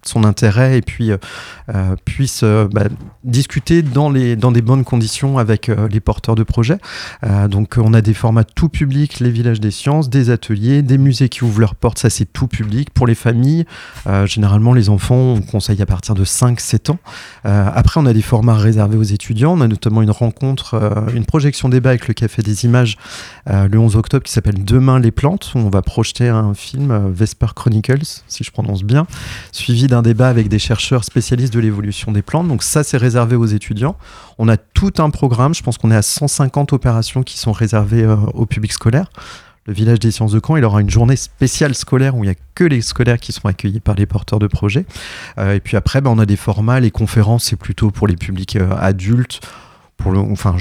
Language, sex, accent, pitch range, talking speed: French, male, French, 105-130 Hz, 225 wpm